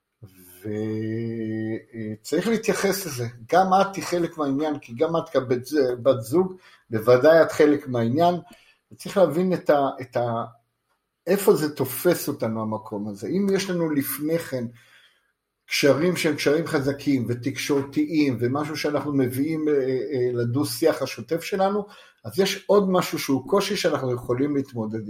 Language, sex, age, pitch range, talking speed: Hebrew, male, 50-69, 120-170 Hz, 130 wpm